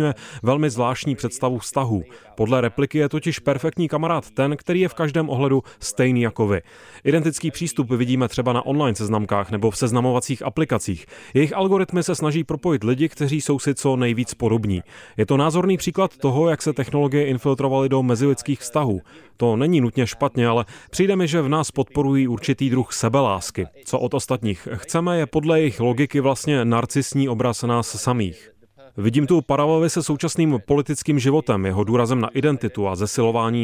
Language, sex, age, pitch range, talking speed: Czech, male, 30-49, 115-150 Hz, 170 wpm